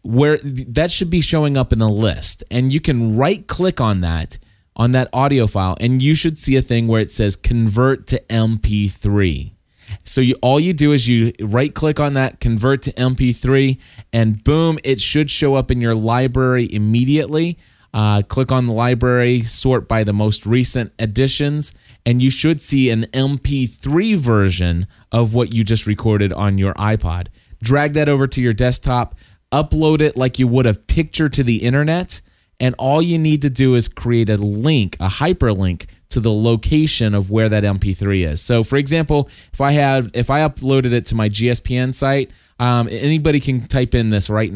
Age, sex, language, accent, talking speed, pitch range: 20-39, male, English, American, 185 wpm, 105-135 Hz